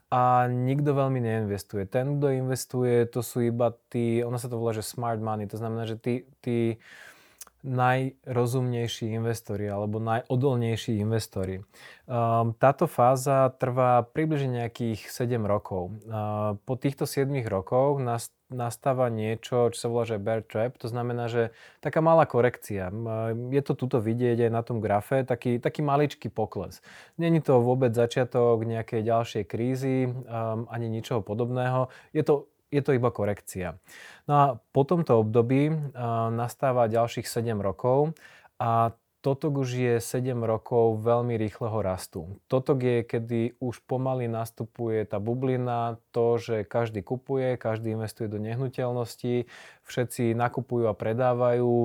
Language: Slovak